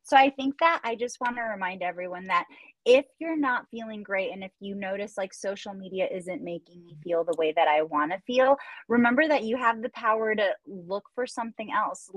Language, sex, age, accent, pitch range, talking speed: English, female, 20-39, American, 175-230 Hz, 220 wpm